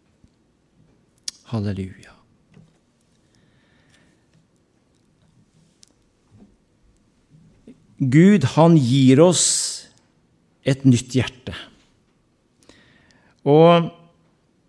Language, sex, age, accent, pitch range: Danish, male, 50-69, Norwegian, 120-150 Hz